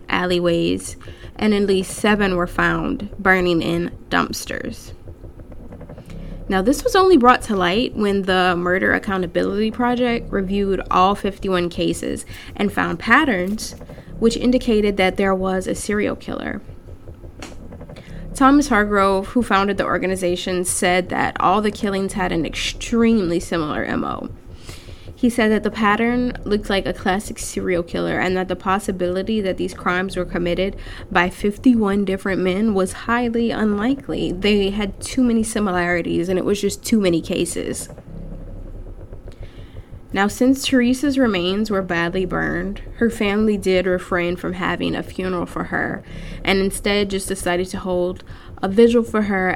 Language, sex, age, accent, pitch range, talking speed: English, female, 10-29, American, 170-210 Hz, 145 wpm